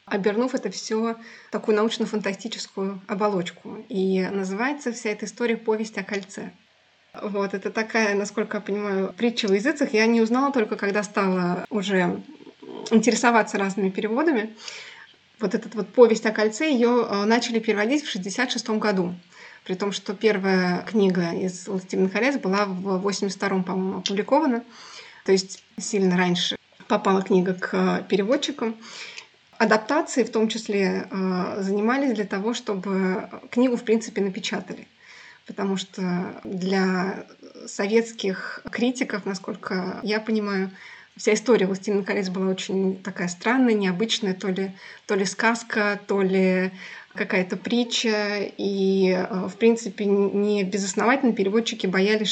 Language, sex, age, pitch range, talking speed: Russian, female, 20-39, 195-225 Hz, 125 wpm